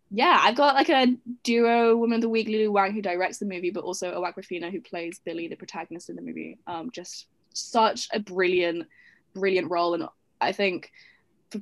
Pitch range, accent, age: 175-215 Hz, British, 10-29